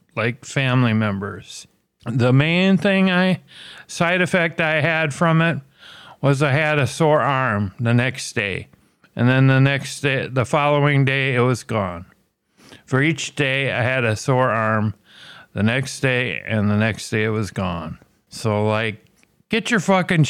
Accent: American